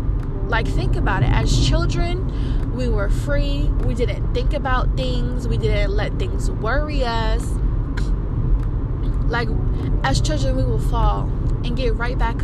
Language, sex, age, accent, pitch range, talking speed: English, female, 20-39, American, 115-130 Hz, 145 wpm